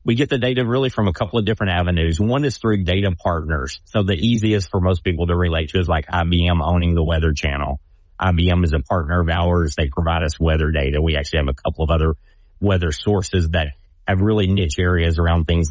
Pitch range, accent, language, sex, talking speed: 80-95 Hz, American, English, male, 225 wpm